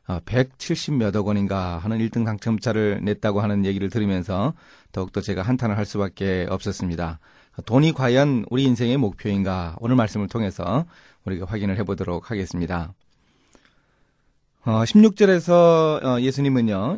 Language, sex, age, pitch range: Korean, male, 30-49, 100-140 Hz